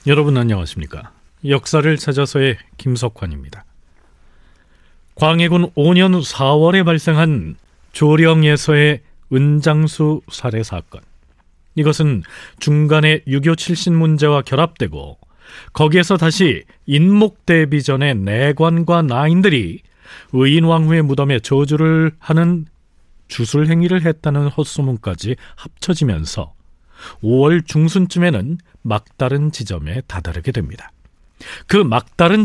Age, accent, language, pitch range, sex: 40-59, native, Korean, 110-165 Hz, male